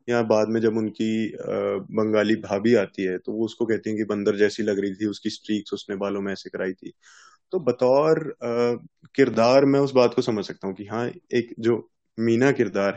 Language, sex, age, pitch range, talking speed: Hindi, male, 20-39, 105-125 Hz, 200 wpm